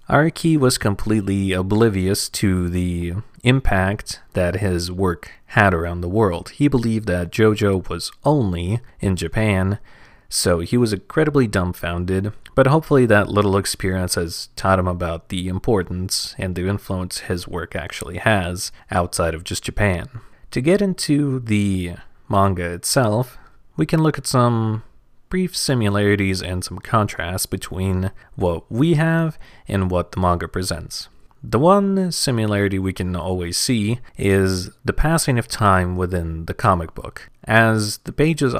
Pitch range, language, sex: 90-120 Hz, English, male